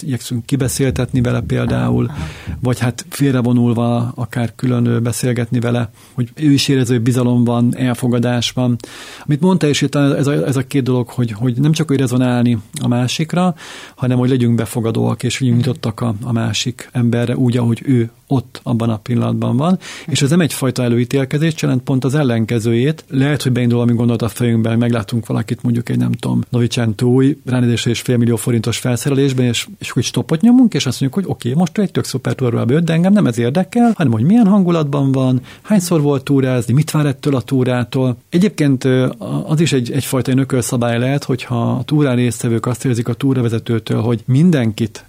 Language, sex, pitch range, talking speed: Hungarian, male, 120-135 Hz, 175 wpm